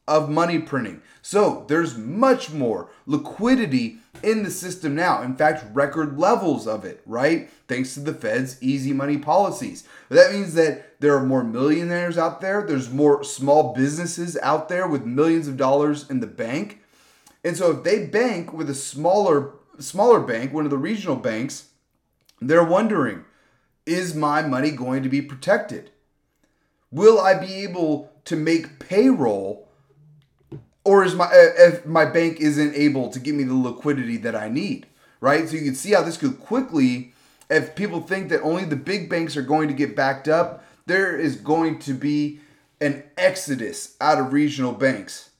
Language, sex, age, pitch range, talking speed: English, male, 30-49, 140-180 Hz, 170 wpm